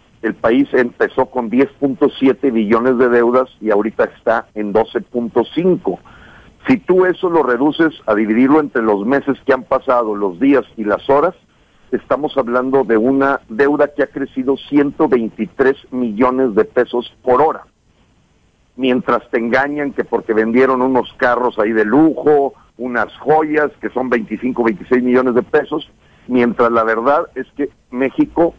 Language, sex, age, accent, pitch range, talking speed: English, male, 50-69, Mexican, 115-145 Hz, 150 wpm